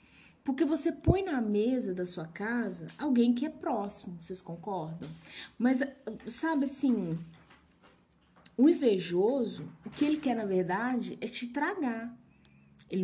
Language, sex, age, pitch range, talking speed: Portuguese, female, 20-39, 175-235 Hz, 135 wpm